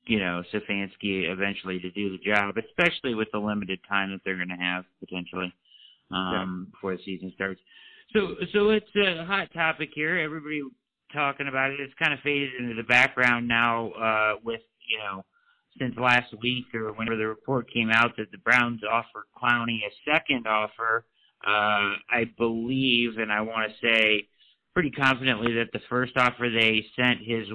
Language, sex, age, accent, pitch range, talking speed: English, male, 50-69, American, 100-125 Hz, 170 wpm